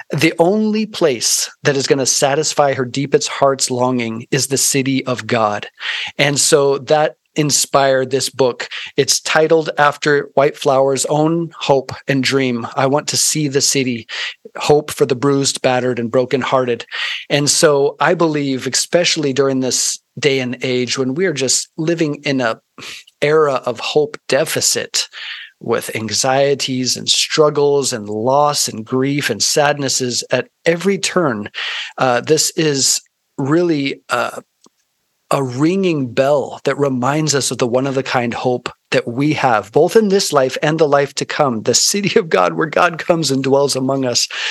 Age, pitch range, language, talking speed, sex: 40-59, 135-170 Hz, English, 160 wpm, male